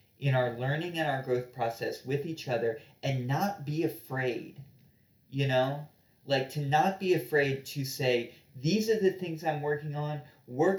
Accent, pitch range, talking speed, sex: American, 125-150 Hz, 170 wpm, male